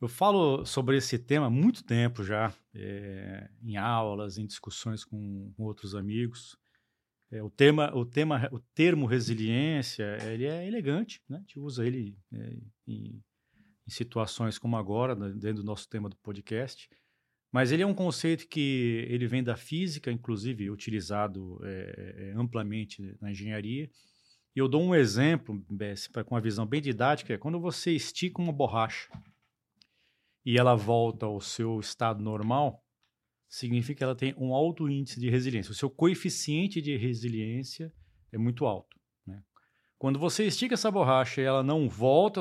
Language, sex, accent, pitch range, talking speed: Portuguese, male, Brazilian, 110-140 Hz, 160 wpm